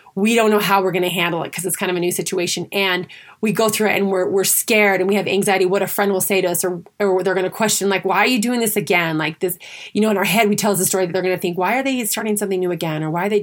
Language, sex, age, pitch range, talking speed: English, female, 30-49, 185-215 Hz, 345 wpm